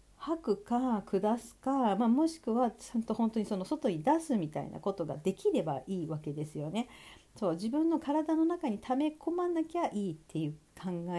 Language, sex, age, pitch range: Japanese, female, 40-59, 175-275 Hz